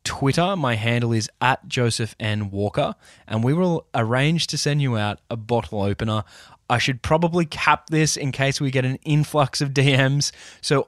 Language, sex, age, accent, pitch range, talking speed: English, male, 20-39, Australian, 110-140 Hz, 180 wpm